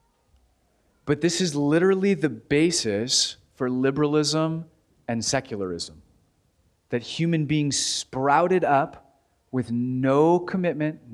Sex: male